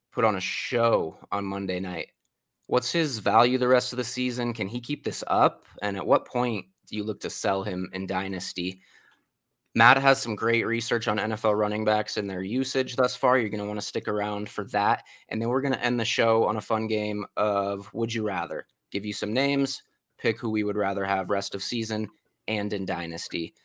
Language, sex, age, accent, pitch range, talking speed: English, male, 20-39, American, 105-125 Hz, 220 wpm